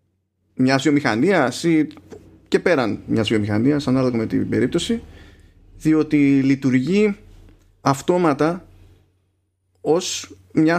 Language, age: Greek, 30-49